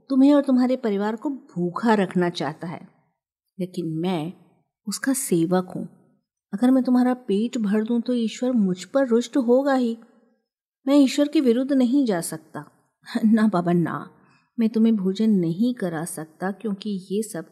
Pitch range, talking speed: 175-245 Hz, 160 wpm